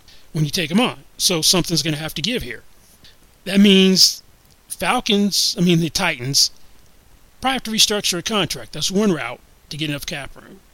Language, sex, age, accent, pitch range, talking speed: English, male, 30-49, American, 155-190 Hz, 190 wpm